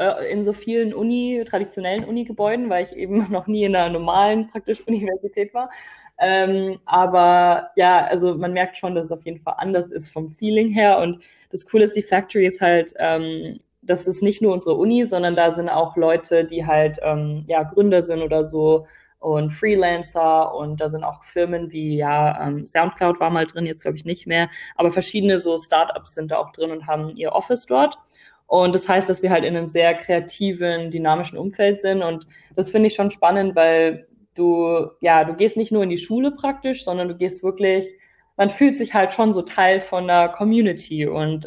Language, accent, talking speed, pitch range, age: German, German, 200 wpm, 165-205 Hz, 20-39